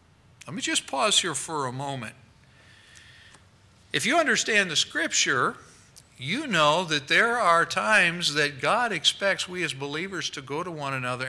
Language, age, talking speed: English, 60-79, 160 wpm